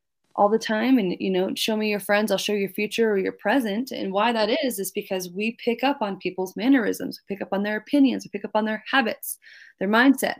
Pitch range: 190-245 Hz